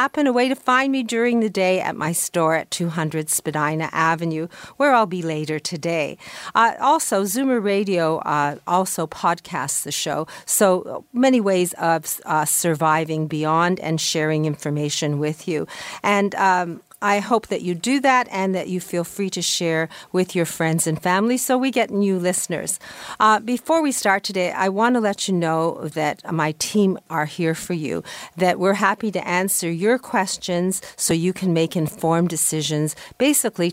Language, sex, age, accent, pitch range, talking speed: English, female, 40-59, American, 155-195 Hz, 175 wpm